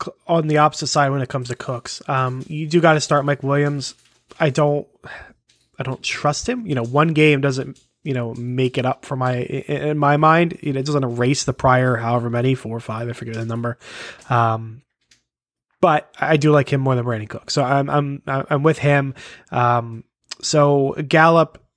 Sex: male